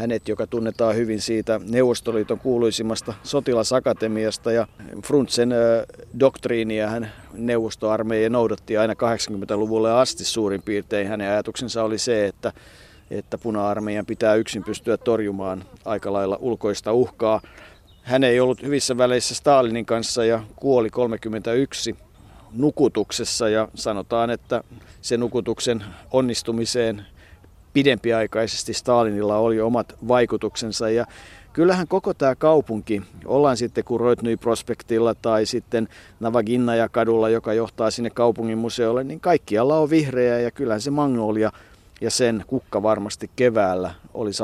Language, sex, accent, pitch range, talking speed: Finnish, male, native, 105-120 Hz, 115 wpm